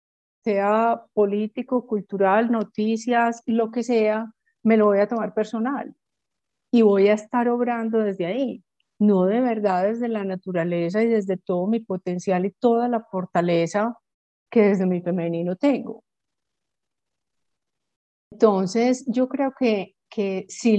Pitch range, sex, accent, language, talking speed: 200-240 Hz, female, Colombian, Spanish, 135 wpm